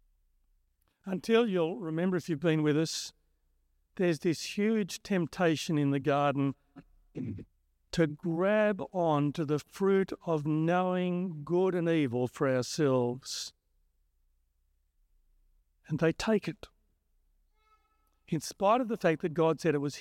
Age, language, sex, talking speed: 50-69, English, male, 125 wpm